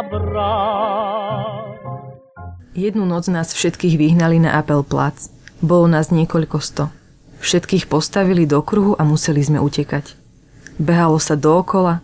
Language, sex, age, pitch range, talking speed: Slovak, female, 20-39, 145-170 Hz, 110 wpm